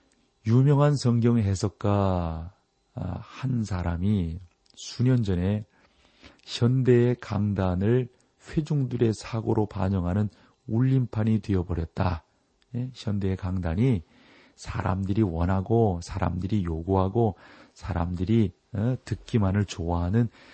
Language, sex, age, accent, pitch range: Korean, male, 40-59, native, 95-125 Hz